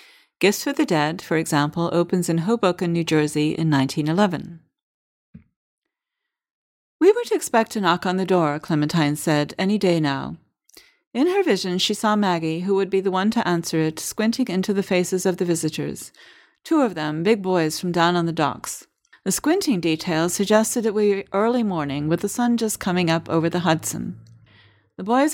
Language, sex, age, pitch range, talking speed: English, female, 40-59, 165-215 Hz, 180 wpm